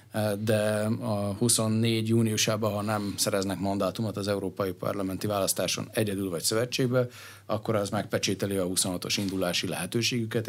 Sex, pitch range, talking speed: male, 100-115 Hz, 125 wpm